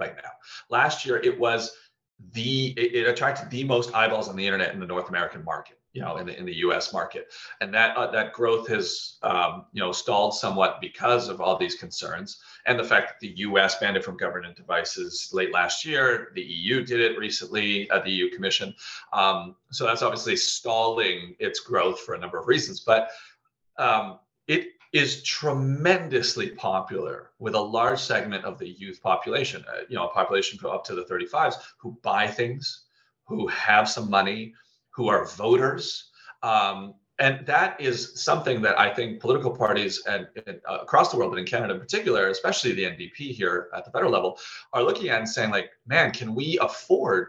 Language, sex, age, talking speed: English, male, 40-59, 190 wpm